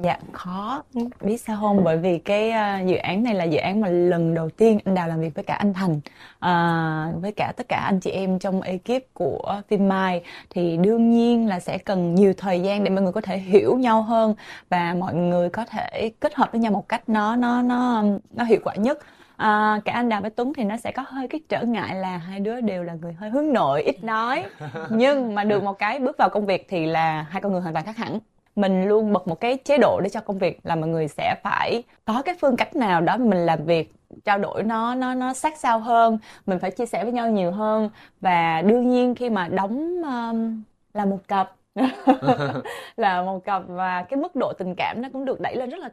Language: Vietnamese